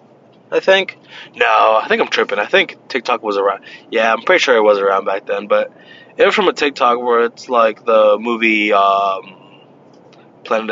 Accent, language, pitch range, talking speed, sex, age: American, English, 105-145 Hz, 190 wpm, male, 20-39